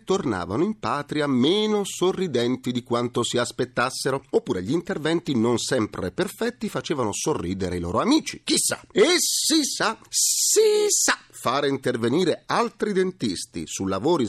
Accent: native